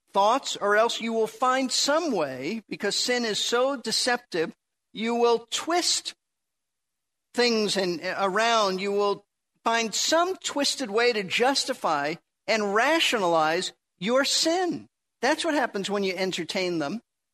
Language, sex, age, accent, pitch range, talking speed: English, male, 50-69, American, 185-245 Hz, 130 wpm